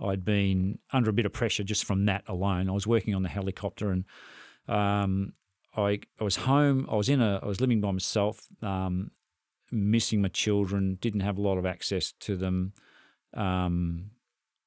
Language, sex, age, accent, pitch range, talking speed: English, male, 40-59, Australian, 95-110 Hz, 185 wpm